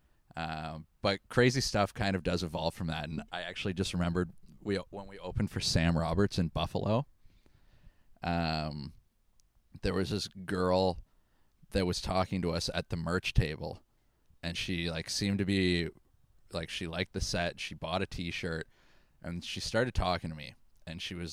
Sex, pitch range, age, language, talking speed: male, 85-100 Hz, 20-39, English, 175 wpm